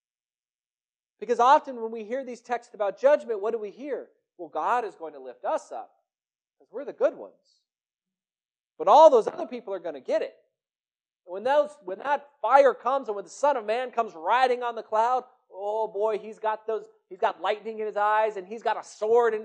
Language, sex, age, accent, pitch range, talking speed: English, male, 40-59, American, 160-240 Hz, 215 wpm